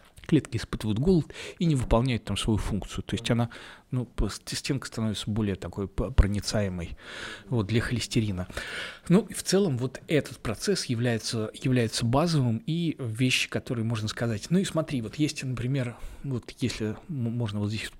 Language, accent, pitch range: Russian, native, 110-135 Hz